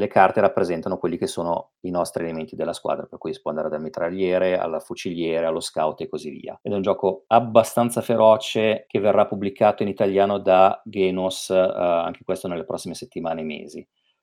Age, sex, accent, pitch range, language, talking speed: 40-59, male, native, 90-115 Hz, Italian, 195 wpm